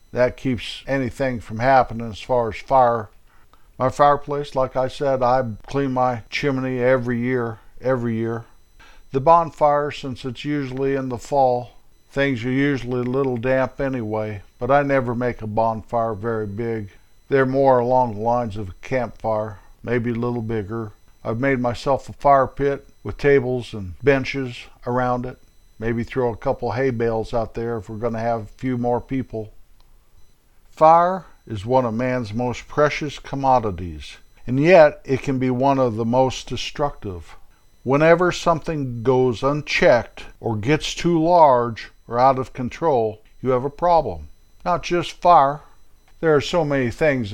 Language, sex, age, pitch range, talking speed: English, male, 50-69, 115-135 Hz, 160 wpm